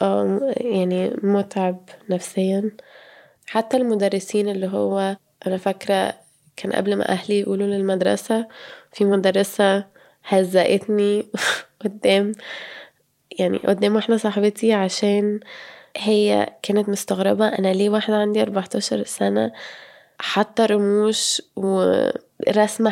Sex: female